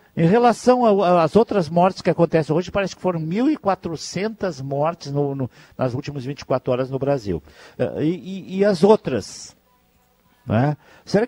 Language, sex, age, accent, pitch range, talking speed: Portuguese, male, 60-79, Brazilian, 115-165 Hz, 155 wpm